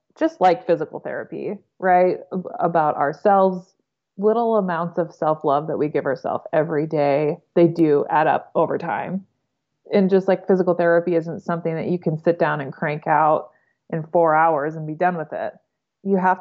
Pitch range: 150-185 Hz